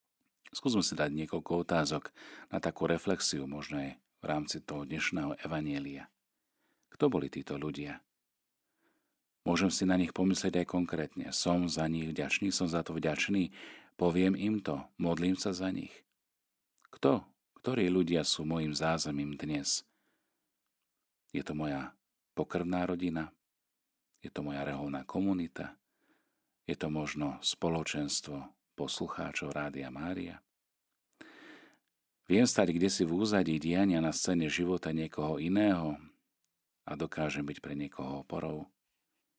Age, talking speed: 40-59, 125 wpm